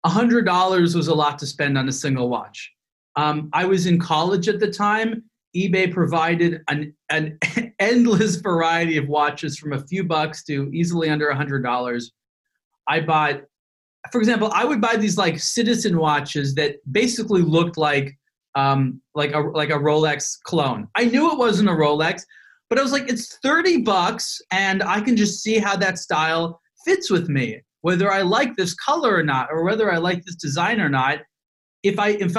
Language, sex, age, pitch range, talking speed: English, male, 30-49, 155-210 Hz, 180 wpm